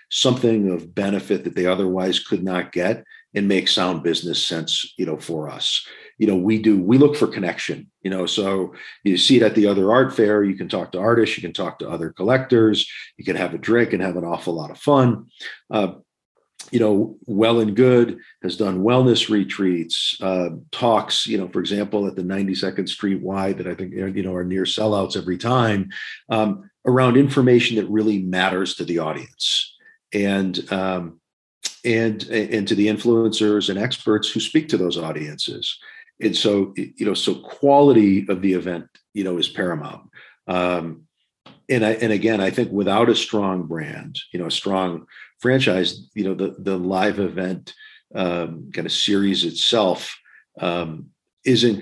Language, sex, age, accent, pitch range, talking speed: English, male, 40-59, American, 90-110 Hz, 180 wpm